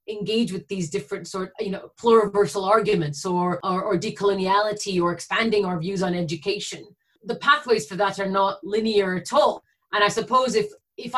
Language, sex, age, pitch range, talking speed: English, female, 30-49, 200-245 Hz, 175 wpm